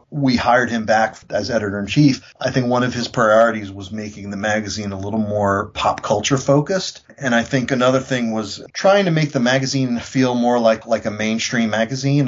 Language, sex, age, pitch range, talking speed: English, male, 30-49, 100-130 Hz, 205 wpm